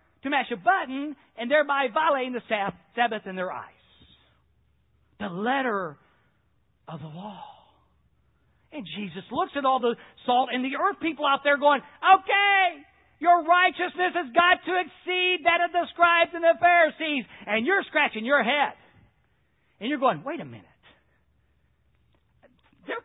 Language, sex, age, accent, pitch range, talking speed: English, male, 50-69, American, 200-320 Hz, 150 wpm